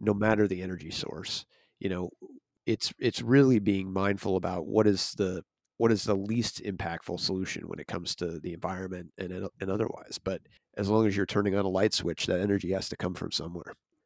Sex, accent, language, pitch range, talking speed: male, American, English, 100-115 Hz, 205 wpm